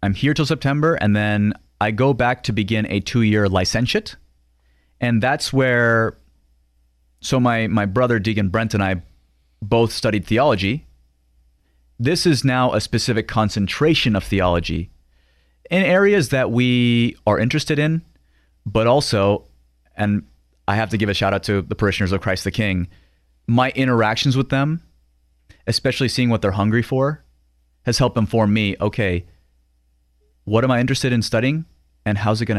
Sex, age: male, 30-49